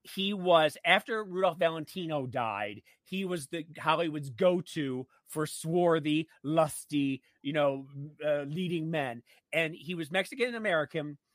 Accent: American